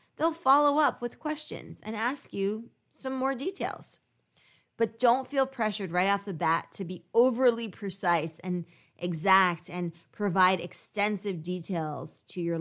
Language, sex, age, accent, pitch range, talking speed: English, female, 20-39, American, 170-235 Hz, 150 wpm